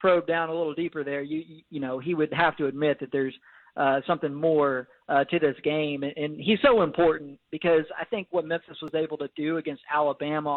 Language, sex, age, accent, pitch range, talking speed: English, male, 40-59, American, 150-175 Hz, 225 wpm